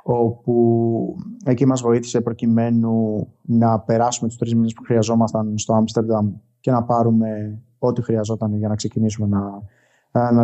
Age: 20-39